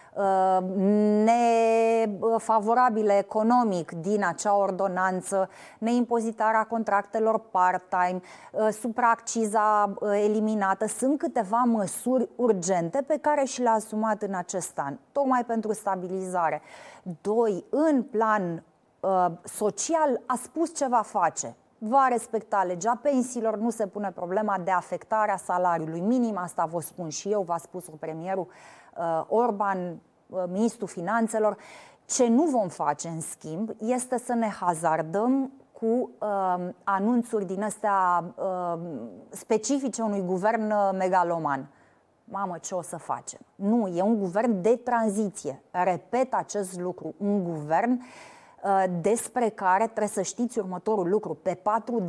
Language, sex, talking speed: Romanian, female, 120 wpm